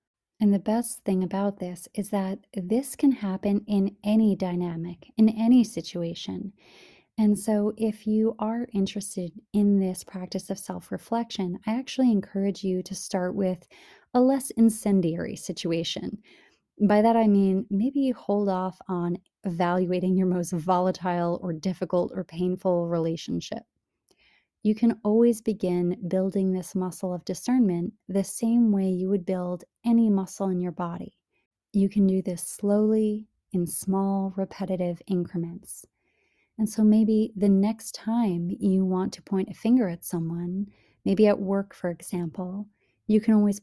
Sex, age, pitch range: female, 30-49, 180-215 Hz